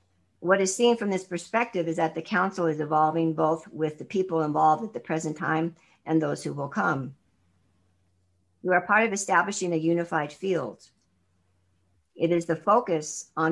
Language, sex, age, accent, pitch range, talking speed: English, female, 50-69, American, 150-185 Hz, 175 wpm